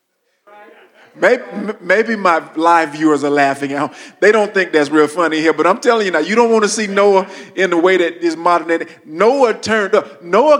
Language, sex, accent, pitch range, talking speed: English, male, American, 165-220 Hz, 200 wpm